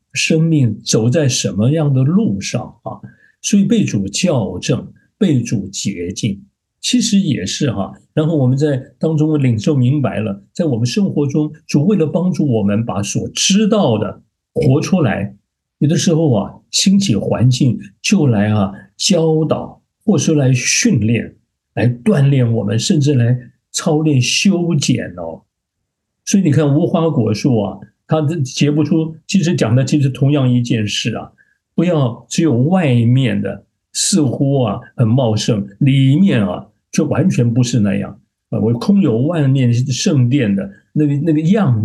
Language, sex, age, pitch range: Chinese, male, 60-79, 110-155 Hz